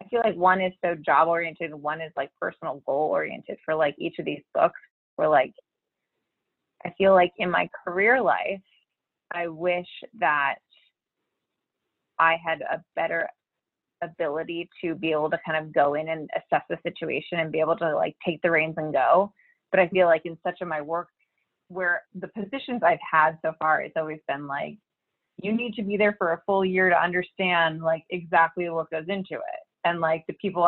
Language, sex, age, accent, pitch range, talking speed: English, female, 20-39, American, 160-190 Hz, 200 wpm